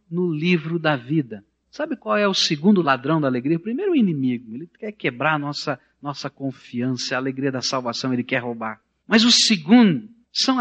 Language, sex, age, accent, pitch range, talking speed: Portuguese, male, 50-69, Brazilian, 125-180 Hz, 185 wpm